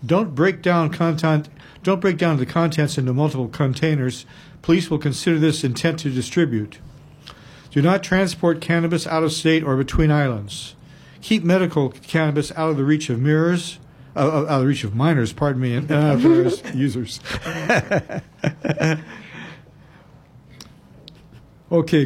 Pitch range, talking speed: 140-170 Hz, 140 wpm